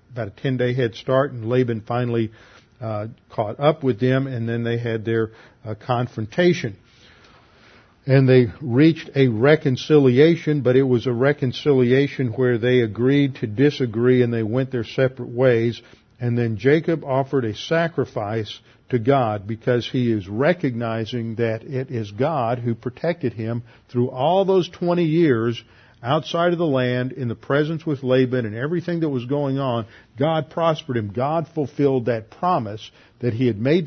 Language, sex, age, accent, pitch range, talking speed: English, male, 50-69, American, 115-140 Hz, 160 wpm